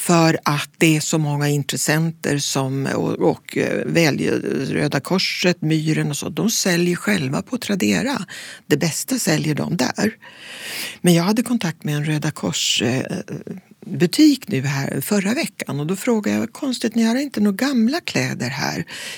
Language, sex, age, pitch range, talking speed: Swedish, female, 60-79, 155-215 Hz, 155 wpm